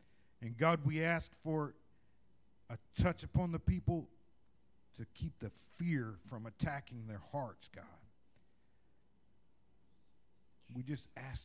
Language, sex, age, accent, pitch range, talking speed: English, male, 50-69, American, 105-155 Hz, 115 wpm